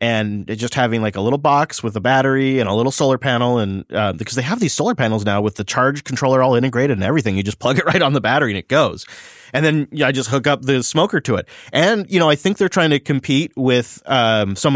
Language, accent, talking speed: English, American, 265 wpm